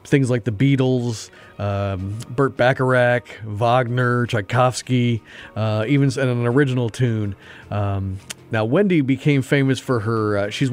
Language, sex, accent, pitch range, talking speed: English, male, American, 110-130 Hz, 130 wpm